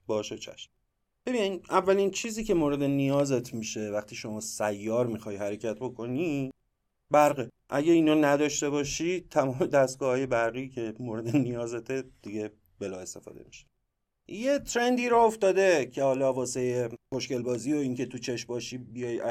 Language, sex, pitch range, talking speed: Persian, male, 115-165 Hz, 145 wpm